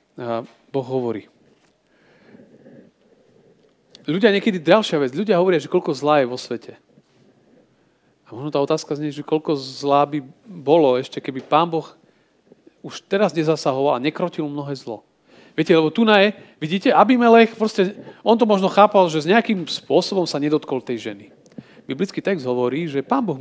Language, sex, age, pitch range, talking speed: Slovak, male, 40-59, 130-175 Hz, 155 wpm